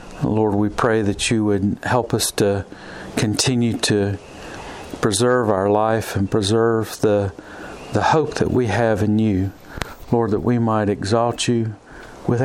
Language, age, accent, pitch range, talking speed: English, 50-69, American, 100-115 Hz, 150 wpm